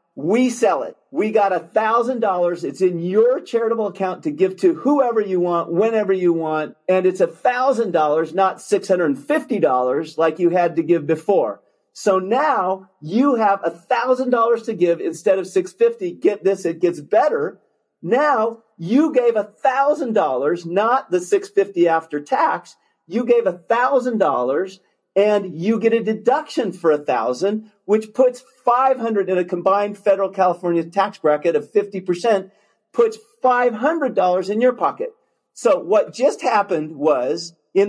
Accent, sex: American, male